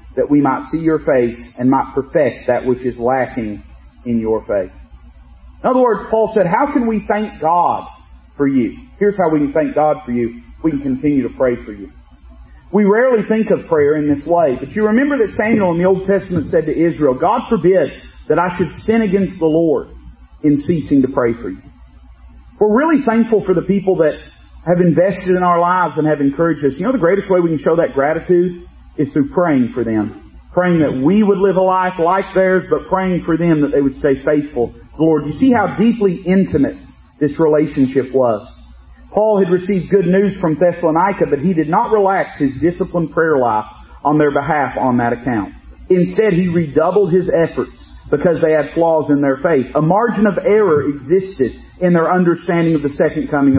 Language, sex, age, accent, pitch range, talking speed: English, male, 40-59, American, 135-190 Hz, 205 wpm